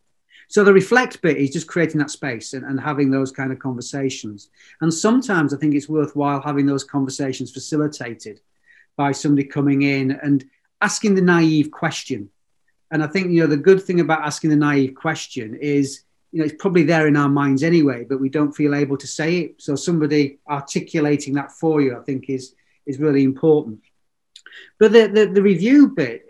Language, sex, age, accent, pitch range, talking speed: English, male, 40-59, British, 140-175 Hz, 190 wpm